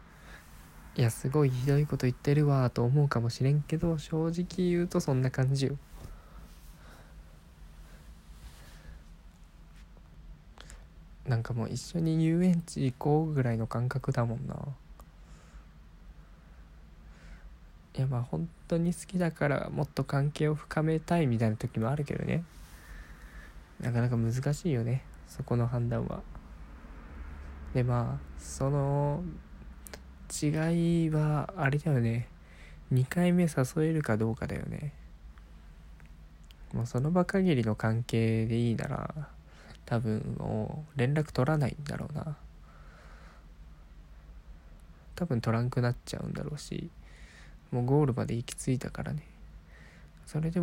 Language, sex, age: Japanese, male, 20-39